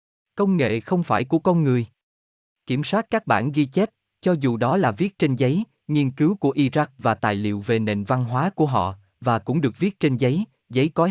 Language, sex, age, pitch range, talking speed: Vietnamese, male, 20-39, 110-155 Hz, 220 wpm